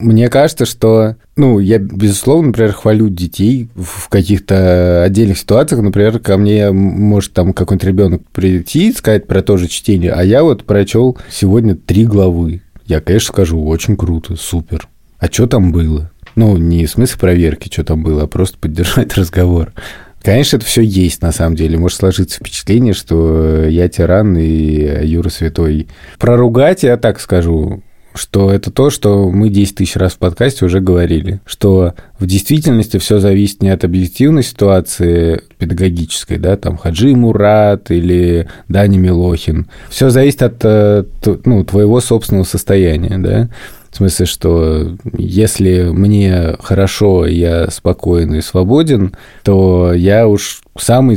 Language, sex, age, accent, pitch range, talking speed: Russian, male, 20-39, native, 90-110 Hz, 150 wpm